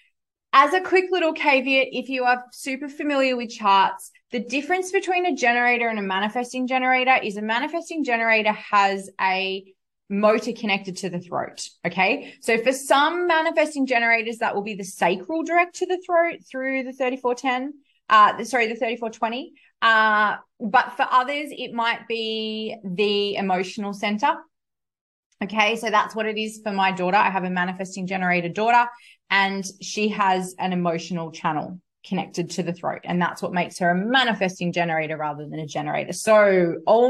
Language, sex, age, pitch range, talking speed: English, female, 20-39, 200-275 Hz, 165 wpm